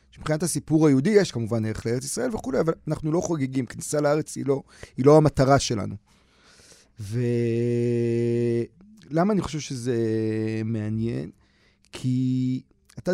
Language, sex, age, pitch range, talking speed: Hebrew, male, 30-49, 120-165 Hz, 130 wpm